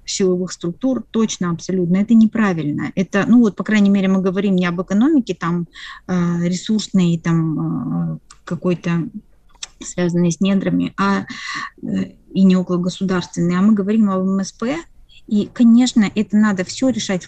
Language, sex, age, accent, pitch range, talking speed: Russian, female, 30-49, native, 185-225 Hz, 140 wpm